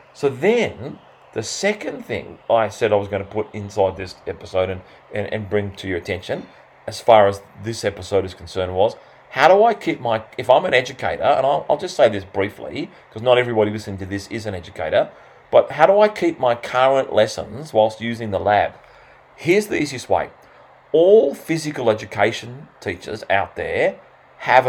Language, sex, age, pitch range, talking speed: English, male, 30-49, 105-150 Hz, 190 wpm